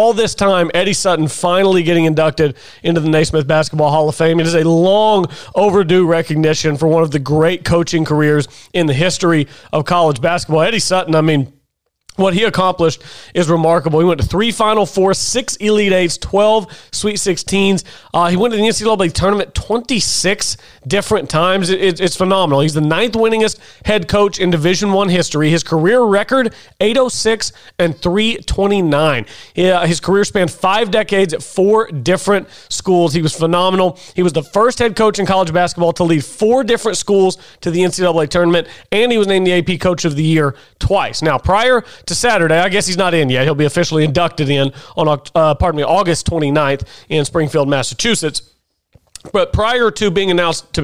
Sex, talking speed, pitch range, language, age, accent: male, 190 wpm, 160-200 Hz, English, 30-49, American